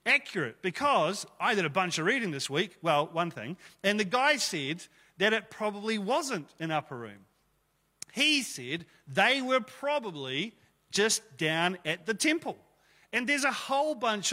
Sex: male